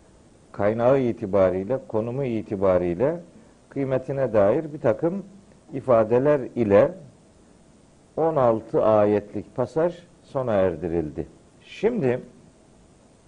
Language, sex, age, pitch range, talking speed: Turkish, male, 50-69, 120-175 Hz, 70 wpm